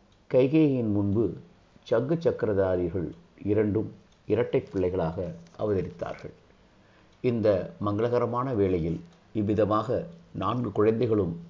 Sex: male